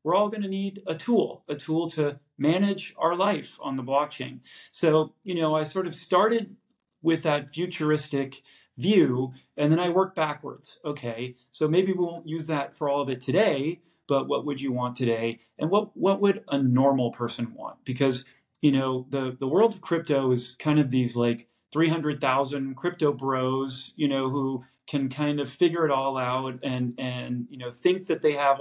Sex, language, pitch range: male, English, 130-155 Hz